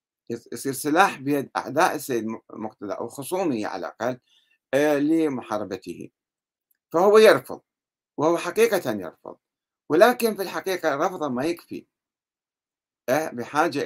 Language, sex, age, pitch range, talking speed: Arabic, male, 60-79, 115-150 Hz, 100 wpm